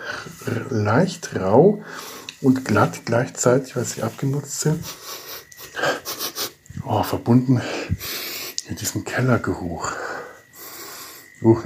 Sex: male